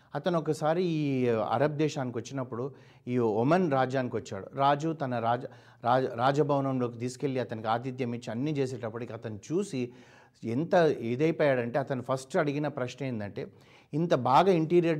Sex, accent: male, native